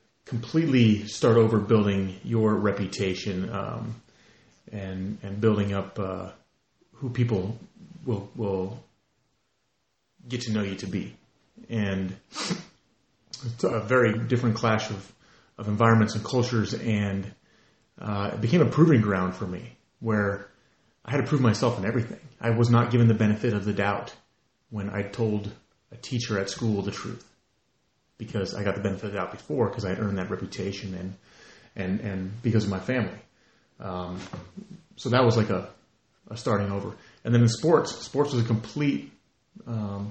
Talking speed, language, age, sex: 160 wpm, English, 30-49, male